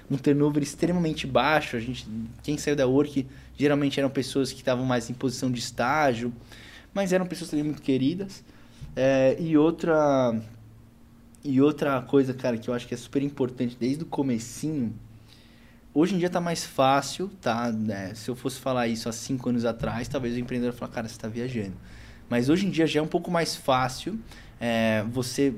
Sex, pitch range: male, 120-150 Hz